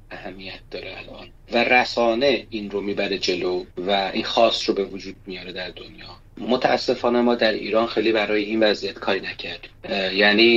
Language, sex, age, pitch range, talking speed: Persian, male, 30-49, 100-120 Hz, 165 wpm